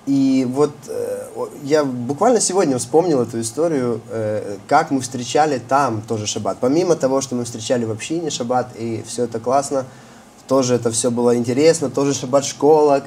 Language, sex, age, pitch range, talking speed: Russian, male, 20-39, 125-165 Hz, 155 wpm